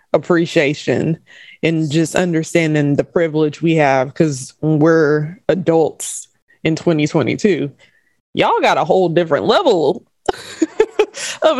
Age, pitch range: 20-39, 145-190 Hz